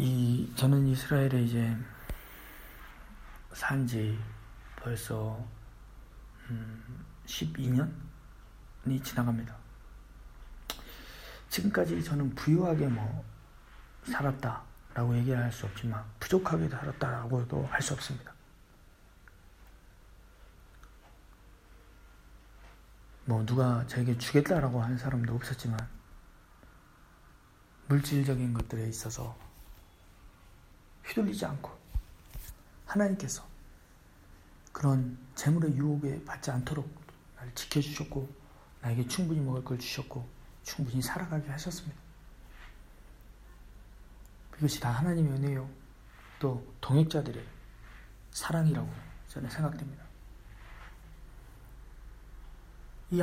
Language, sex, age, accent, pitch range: Korean, male, 40-59, native, 110-140 Hz